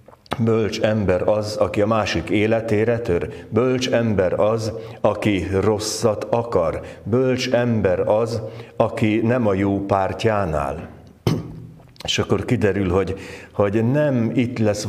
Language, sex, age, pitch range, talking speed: Hungarian, male, 60-79, 90-115 Hz, 125 wpm